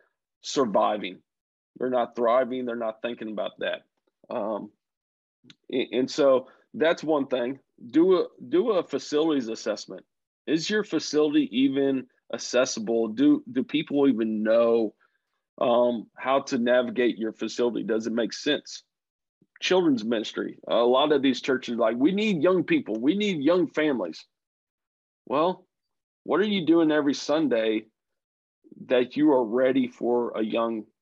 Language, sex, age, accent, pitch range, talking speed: English, male, 40-59, American, 115-155 Hz, 140 wpm